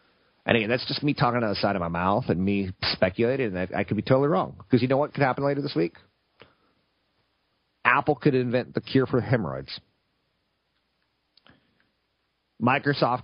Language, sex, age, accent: English, male, 40-59, American